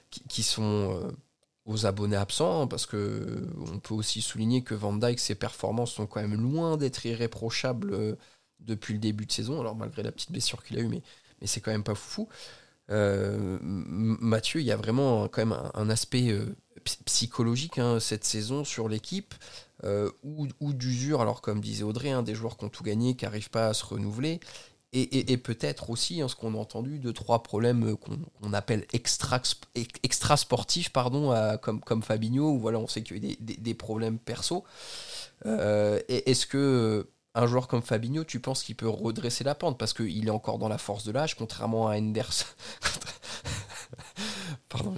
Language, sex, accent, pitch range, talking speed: French, male, French, 110-125 Hz, 190 wpm